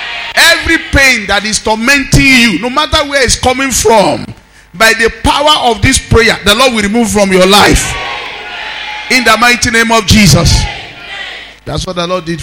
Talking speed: 170 wpm